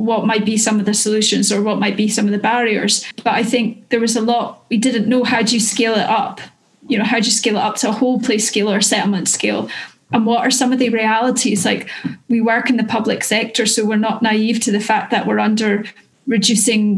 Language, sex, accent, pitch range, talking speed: English, female, British, 215-240 Hz, 255 wpm